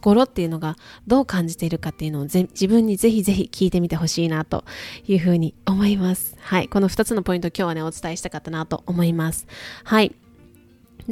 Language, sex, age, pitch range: Japanese, female, 20-39, 170-215 Hz